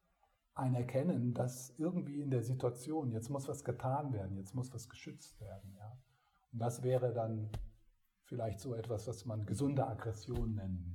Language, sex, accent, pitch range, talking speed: German, male, German, 110-135 Hz, 165 wpm